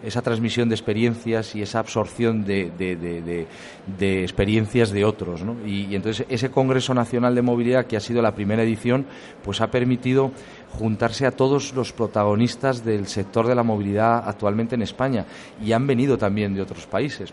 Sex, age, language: male, 40-59, Spanish